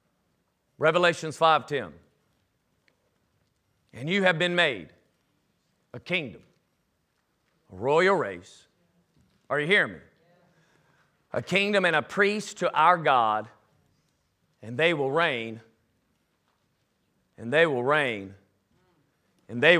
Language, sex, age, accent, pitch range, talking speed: English, male, 40-59, American, 145-190 Hz, 105 wpm